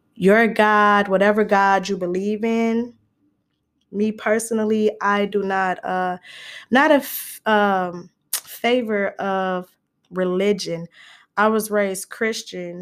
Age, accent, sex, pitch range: 10-29, American, female, 180-230 Hz